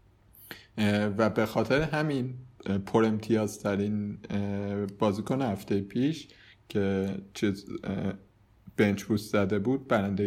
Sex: male